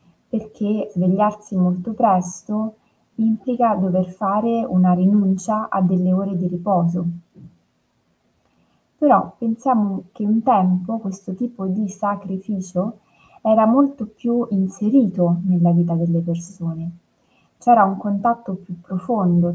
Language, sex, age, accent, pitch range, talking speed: Italian, female, 20-39, native, 180-225 Hz, 110 wpm